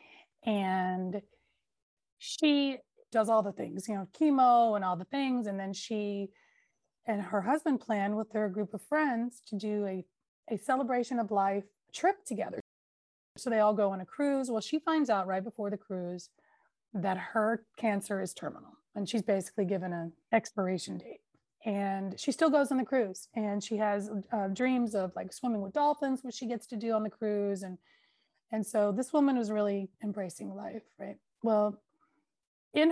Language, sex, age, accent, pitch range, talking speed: English, female, 30-49, American, 200-250 Hz, 180 wpm